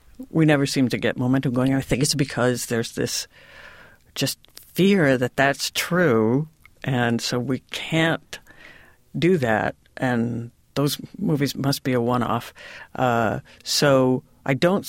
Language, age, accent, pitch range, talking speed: English, 60-79, American, 130-165 Hz, 135 wpm